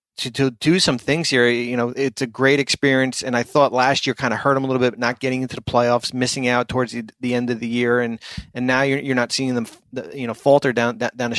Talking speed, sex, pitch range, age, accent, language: 275 wpm, male, 120-140 Hz, 30-49, American, English